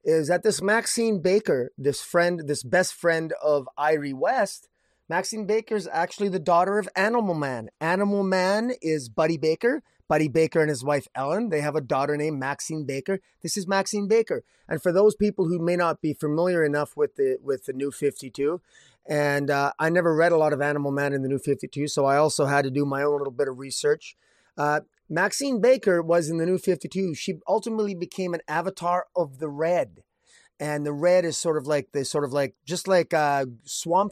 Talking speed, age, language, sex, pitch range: 205 wpm, 30-49, English, male, 145-185 Hz